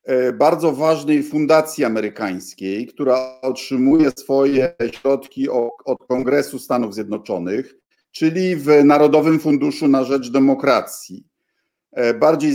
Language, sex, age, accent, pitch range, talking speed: Polish, male, 50-69, native, 135-215 Hz, 95 wpm